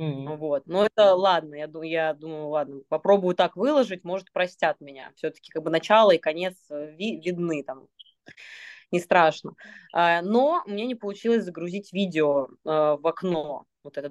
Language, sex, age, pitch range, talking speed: Russian, female, 20-39, 160-210 Hz, 145 wpm